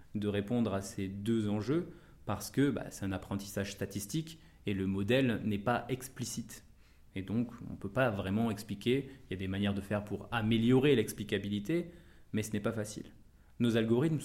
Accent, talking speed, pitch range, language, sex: French, 185 wpm, 100-125 Hz, French, male